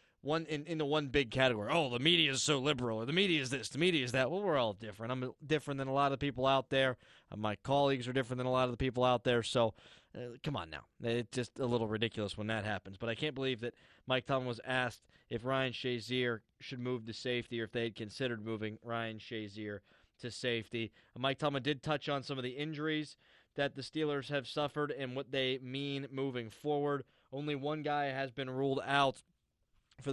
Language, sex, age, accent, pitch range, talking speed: English, male, 20-39, American, 120-140 Hz, 230 wpm